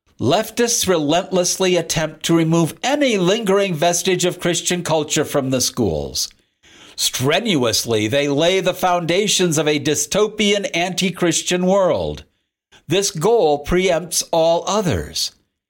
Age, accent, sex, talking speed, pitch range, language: 60-79, American, male, 110 wpm, 140-205 Hz, English